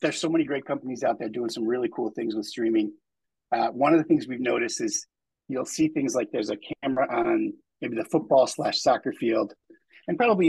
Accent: American